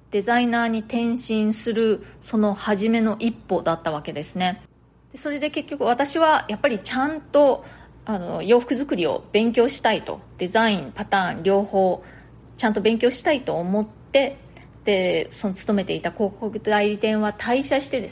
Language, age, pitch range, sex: Japanese, 30-49, 195-270 Hz, female